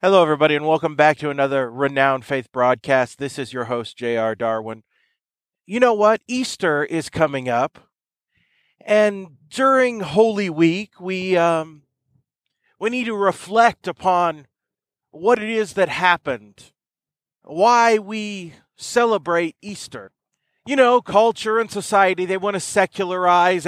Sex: male